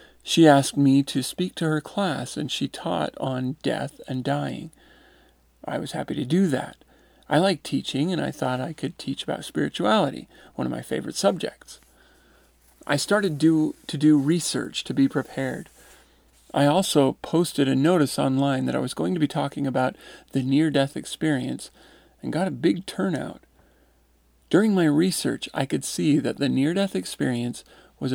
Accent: American